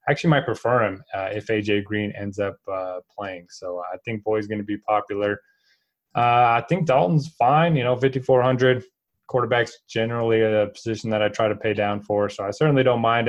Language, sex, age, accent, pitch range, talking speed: English, male, 20-39, American, 105-120 Hz, 200 wpm